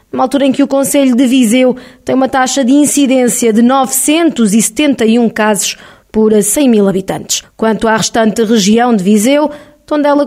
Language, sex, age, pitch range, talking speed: Portuguese, female, 20-39, 225-275 Hz, 160 wpm